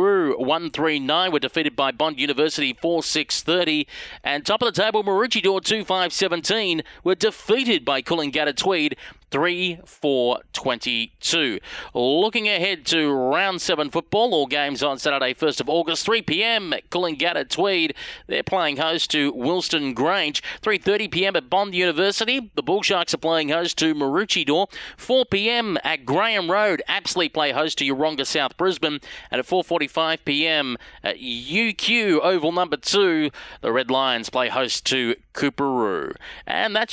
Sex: male